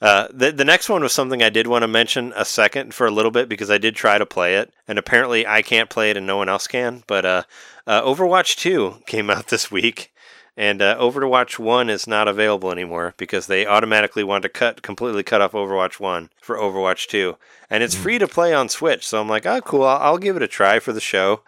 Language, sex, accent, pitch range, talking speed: English, male, American, 100-125 Hz, 245 wpm